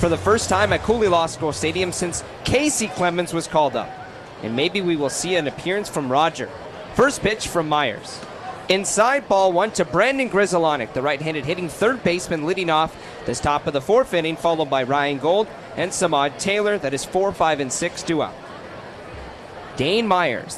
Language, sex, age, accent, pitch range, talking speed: English, male, 30-49, American, 150-195 Hz, 185 wpm